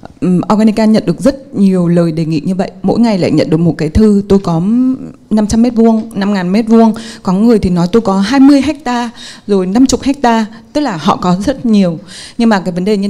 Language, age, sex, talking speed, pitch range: Vietnamese, 20-39, female, 205 wpm, 170-225 Hz